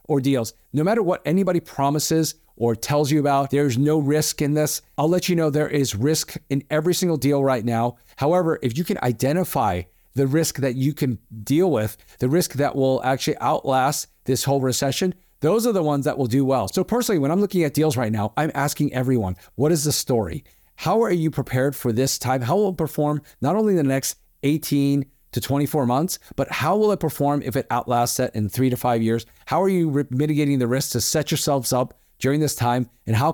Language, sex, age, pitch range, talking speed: English, male, 40-59, 125-155 Hz, 220 wpm